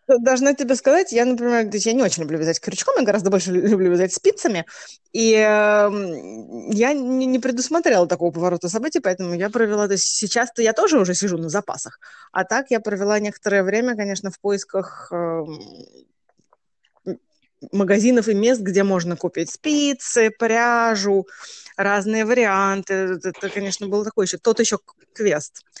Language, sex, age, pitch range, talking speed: Russian, female, 20-39, 185-240 Hz, 145 wpm